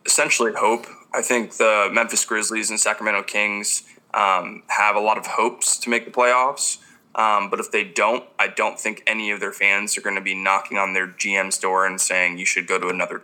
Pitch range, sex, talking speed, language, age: 100-120 Hz, male, 220 wpm, English, 20-39